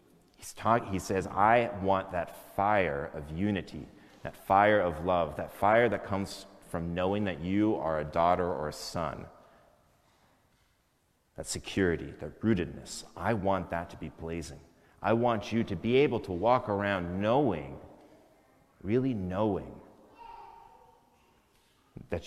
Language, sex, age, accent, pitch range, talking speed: English, male, 30-49, American, 85-105 Hz, 135 wpm